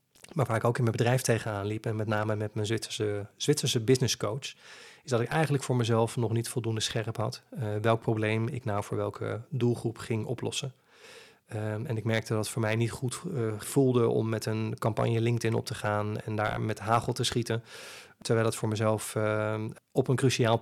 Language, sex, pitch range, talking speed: Dutch, male, 110-120 Hz, 210 wpm